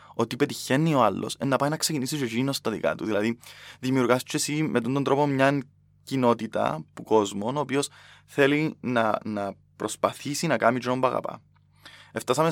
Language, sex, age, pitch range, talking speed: Greek, male, 20-39, 105-135 Hz, 155 wpm